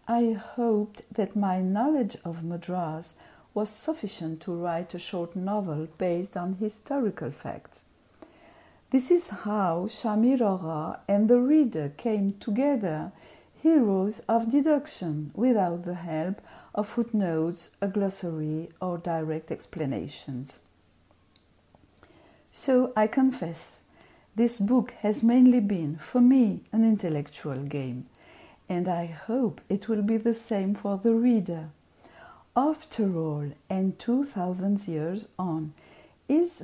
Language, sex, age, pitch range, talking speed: English, female, 60-79, 165-235 Hz, 120 wpm